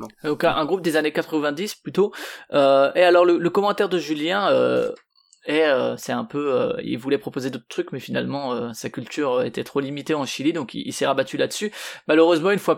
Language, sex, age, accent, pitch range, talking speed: French, male, 20-39, French, 140-180 Hz, 215 wpm